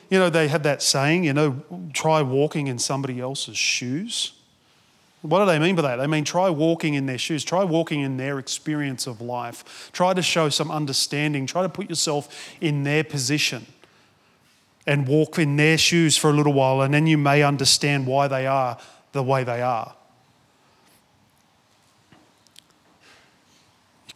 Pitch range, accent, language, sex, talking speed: 130-150 Hz, Australian, English, male, 170 wpm